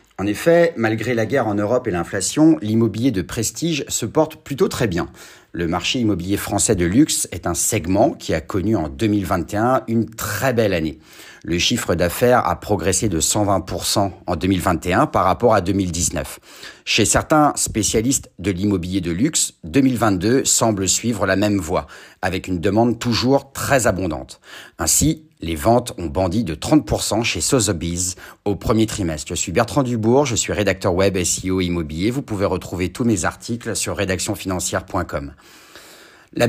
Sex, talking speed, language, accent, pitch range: male, 160 wpm, French, French, 95-125 Hz